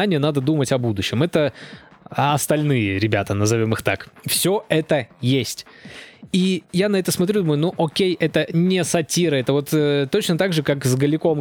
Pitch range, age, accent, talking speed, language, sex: 125-170 Hz, 20-39, native, 175 wpm, Russian, male